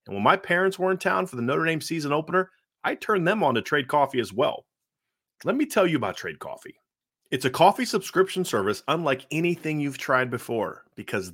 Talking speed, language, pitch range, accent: 210 wpm, English, 130-175 Hz, American